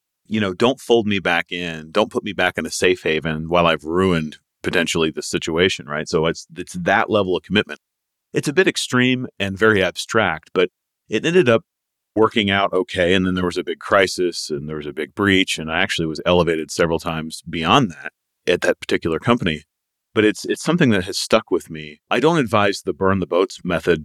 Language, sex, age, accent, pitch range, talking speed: English, male, 40-59, American, 85-115 Hz, 215 wpm